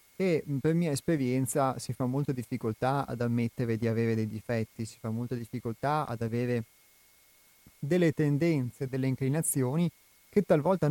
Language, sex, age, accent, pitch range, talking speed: Italian, male, 30-49, native, 120-145 Hz, 145 wpm